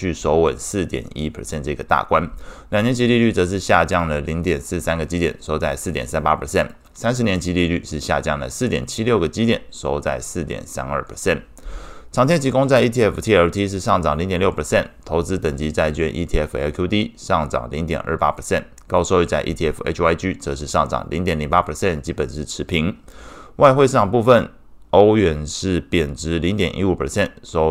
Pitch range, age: 75-90 Hz, 20-39